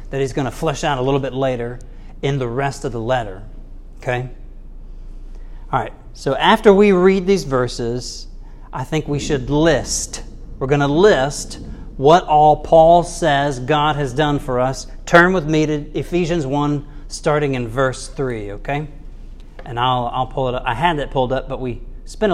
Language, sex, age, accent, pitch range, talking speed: English, male, 40-59, American, 125-160 Hz, 185 wpm